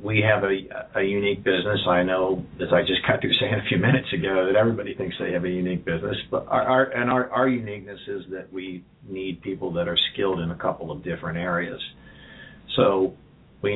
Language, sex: English, male